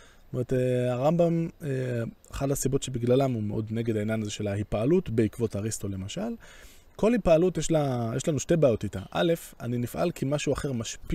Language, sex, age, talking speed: Hebrew, male, 20-39, 180 wpm